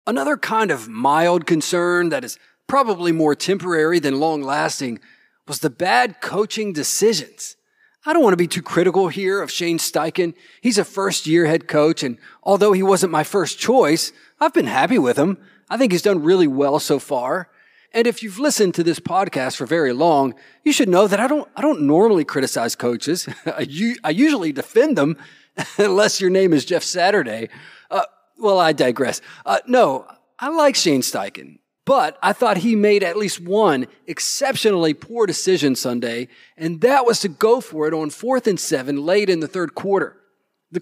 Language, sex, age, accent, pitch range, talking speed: English, male, 40-59, American, 160-235 Hz, 180 wpm